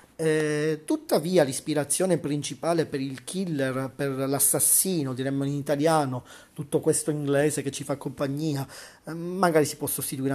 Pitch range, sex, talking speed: 140-165 Hz, male, 140 wpm